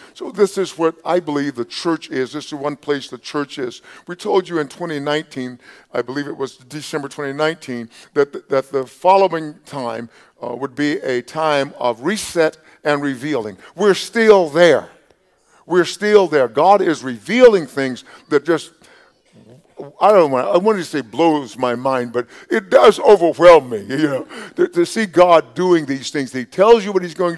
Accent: American